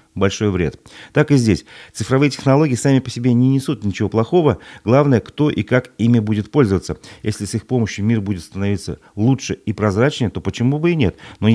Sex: male